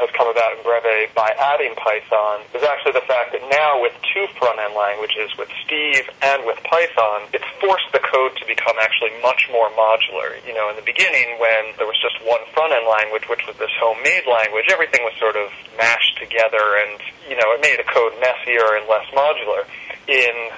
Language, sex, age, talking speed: English, male, 30-49, 200 wpm